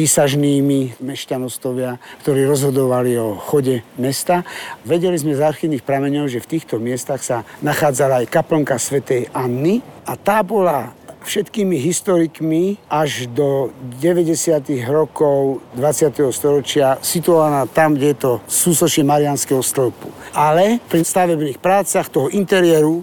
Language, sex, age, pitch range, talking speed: Slovak, male, 60-79, 140-180 Hz, 120 wpm